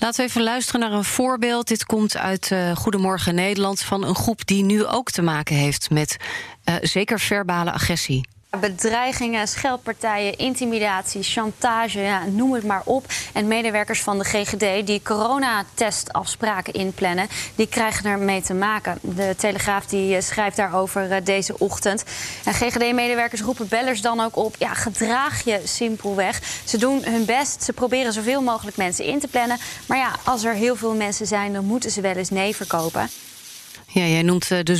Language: Dutch